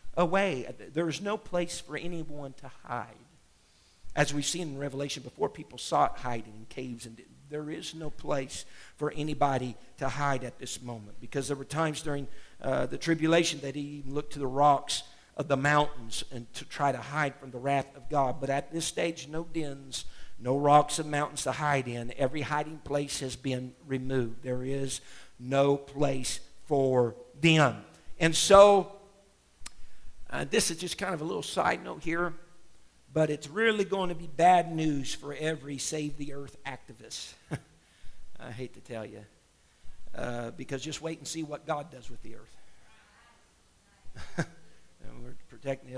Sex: male